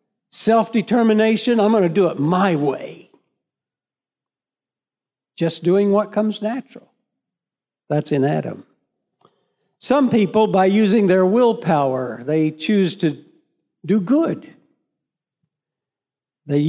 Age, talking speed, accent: 60-79, 100 wpm, American